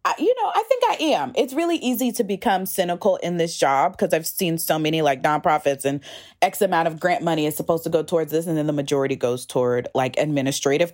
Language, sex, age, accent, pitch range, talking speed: English, female, 20-39, American, 145-180 Hz, 230 wpm